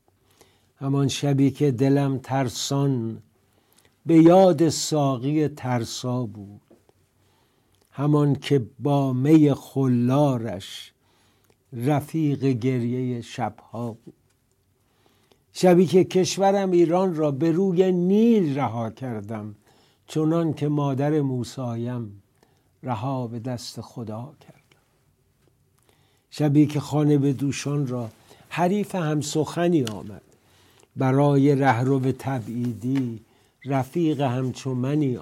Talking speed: 90 wpm